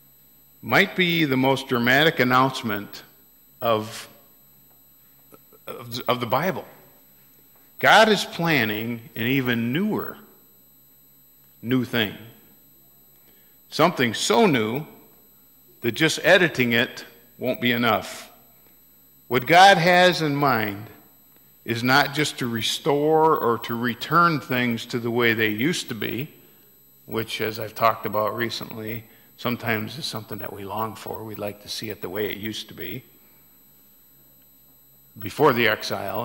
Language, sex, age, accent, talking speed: English, male, 50-69, American, 125 wpm